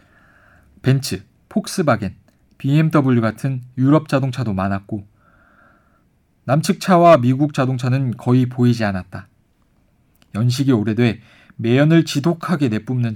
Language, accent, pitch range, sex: Korean, native, 105-150 Hz, male